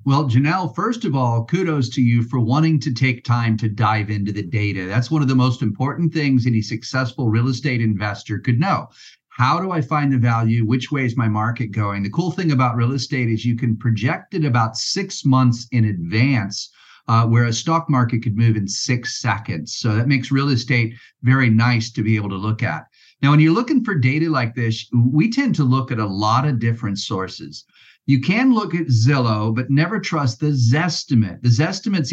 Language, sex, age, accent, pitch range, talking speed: English, male, 40-59, American, 115-145 Hz, 210 wpm